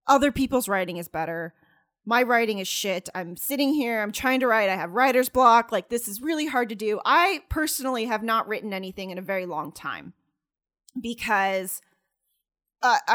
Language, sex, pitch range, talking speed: English, female, 200-280 Hz, 185 wpm